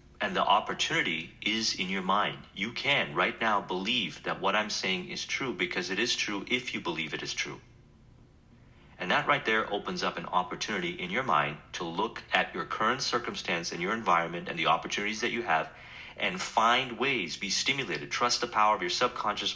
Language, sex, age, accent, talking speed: English, male, 40-59, American, 200 wpm